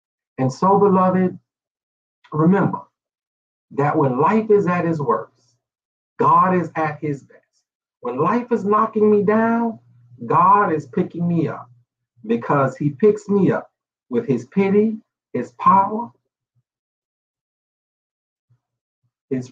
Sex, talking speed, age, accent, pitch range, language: male, 115 wpm, 50-69, American, 125-195 Hz, English